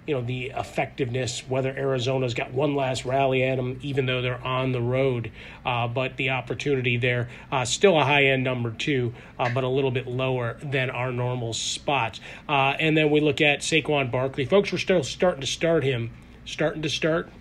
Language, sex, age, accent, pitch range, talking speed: English, male, 30-49, American, 125-145 Hz, 195 wpm